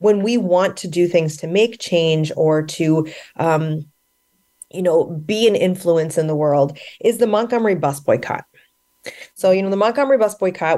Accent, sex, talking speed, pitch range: American, female, 180 wpm, 160-225 Hz